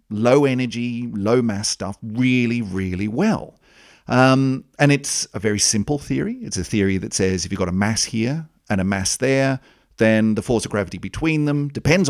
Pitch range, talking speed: 95-135 Hz, 190 wpm